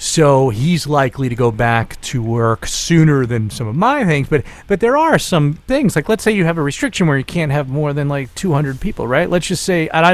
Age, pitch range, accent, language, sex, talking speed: 40-59, 130-170 Hz, American, English, male, 250 wpm